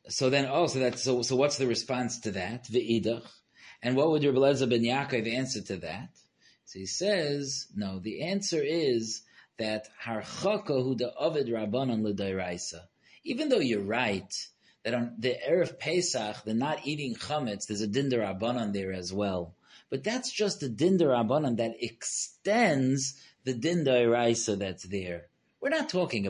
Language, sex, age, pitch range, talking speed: English, male, 30-49, 110-155 Hz, 170 wpm